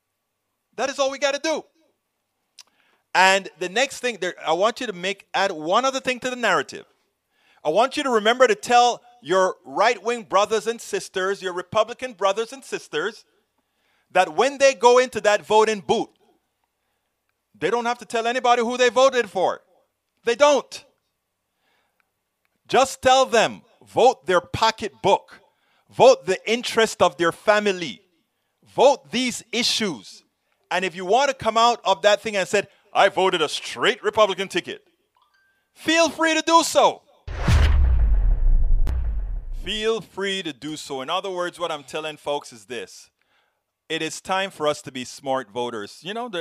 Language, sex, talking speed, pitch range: English, male, 160 wpm, 160-255 Hz